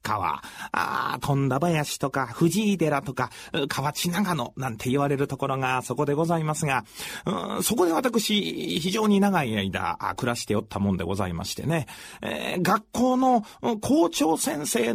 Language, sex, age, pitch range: Japanese, male, 40-59, 130-215 Hz